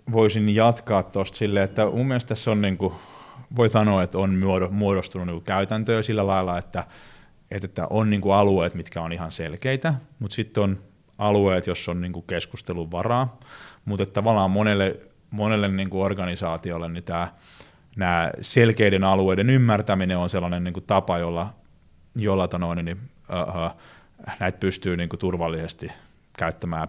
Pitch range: 95-105 Hz